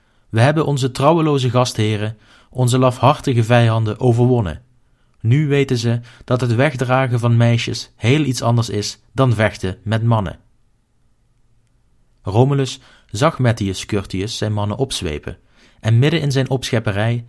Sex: male